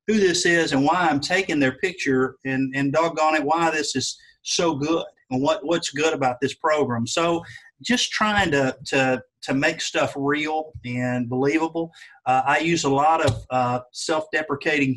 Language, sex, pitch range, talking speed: English, male, 135-165 Hz, 180 wpm